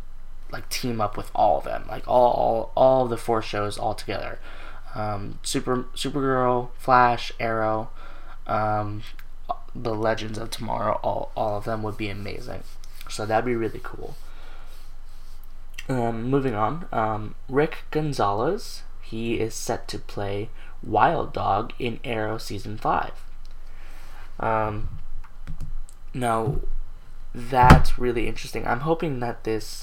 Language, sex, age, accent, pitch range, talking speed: English, male, 10-29, American, 100-120 Hz, 130 wpm